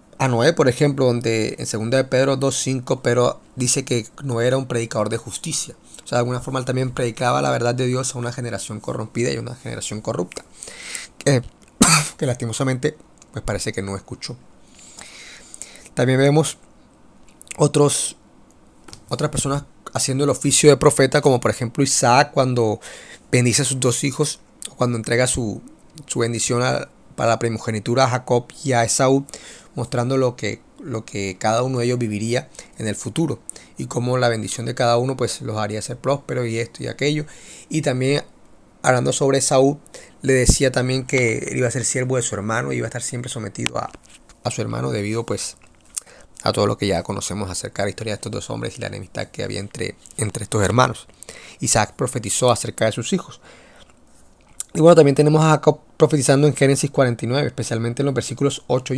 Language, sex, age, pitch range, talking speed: Spanish, male, 30-49, 115-135 Hz, 185 wpm